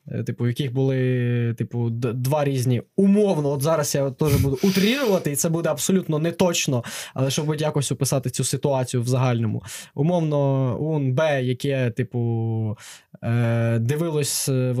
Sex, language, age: male, Ukrainian, 20-39